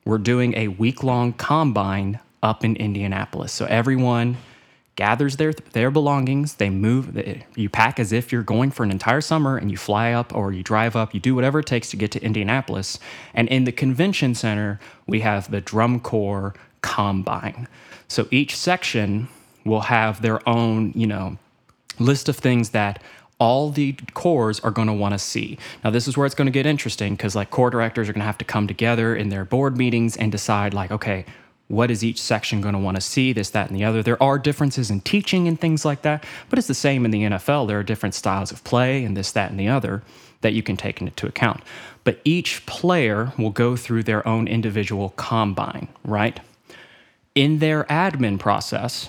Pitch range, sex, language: 105-130 Hz, male, English